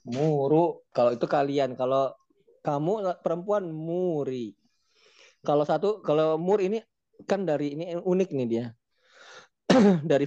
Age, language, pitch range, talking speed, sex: 20-39, Indonesian, 125-170 Hz, 115 wpm, male